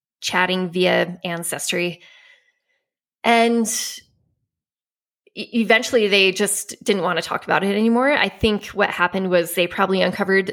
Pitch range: 180-220 Hz